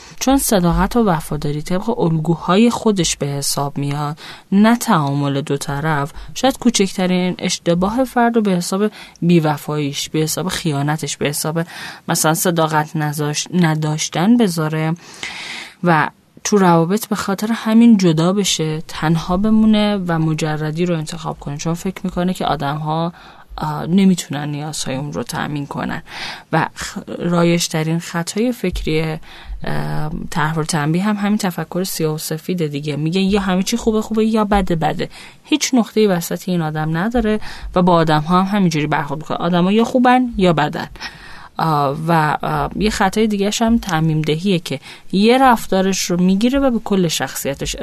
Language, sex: Persian, female